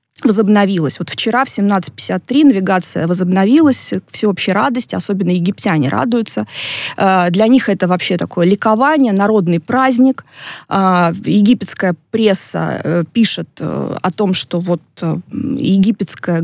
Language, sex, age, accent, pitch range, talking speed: Russian, female, 20-39, native, 175-220 Hz, 100 wpm